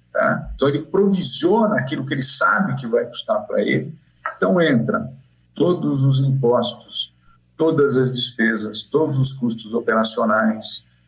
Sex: male